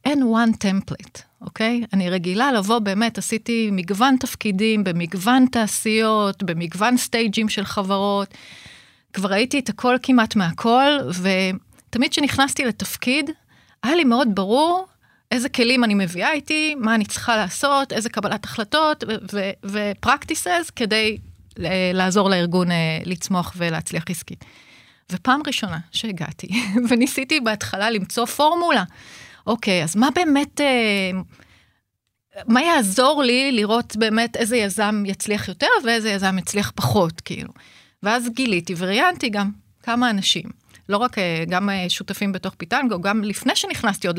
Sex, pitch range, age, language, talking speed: female, 185-245 Hz, 30-49, Hebrew, 130 wpm